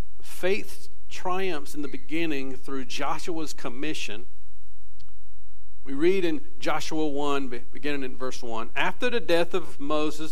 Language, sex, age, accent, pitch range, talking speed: English, male, 50-69, American, 135-180 Hz, 130 wpm